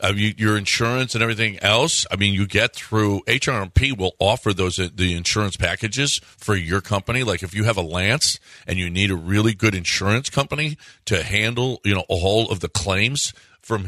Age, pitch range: 50-69, 100-135 Hz